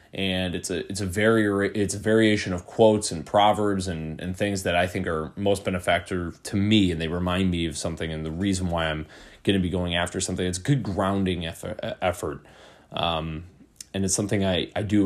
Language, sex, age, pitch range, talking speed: English, male, 20-39, 90-105 Hz, 220 wpm